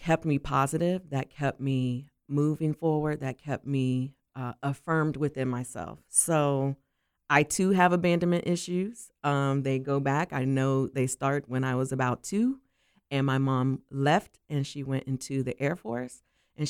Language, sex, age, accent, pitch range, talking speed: English, female, 40-59, American, 130-150 Hz, 165 wpm